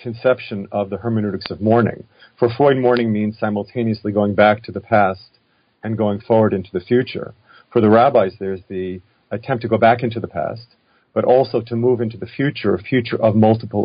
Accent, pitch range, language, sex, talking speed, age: American, 105-120 Hz, English, male, 195 wpm, 40-59